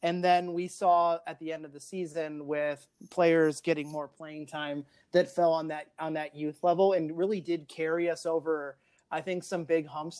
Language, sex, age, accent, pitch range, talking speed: English, male, 30-49, American, 150-170 Hz, 205 wpm